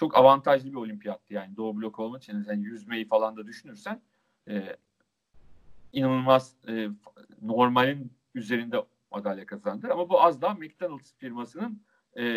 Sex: male